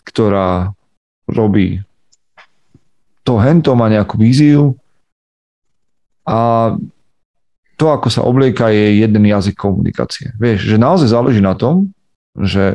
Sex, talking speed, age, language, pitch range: male, 110 wpm, 40-59, Slovak, 95-120 Hz